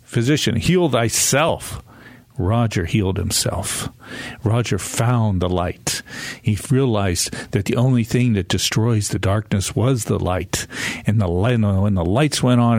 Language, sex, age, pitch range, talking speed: English, male, 50-69, 105-125 Hz, 145 wpm